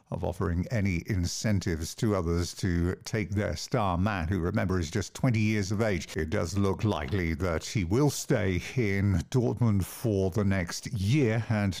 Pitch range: 90-110 Hz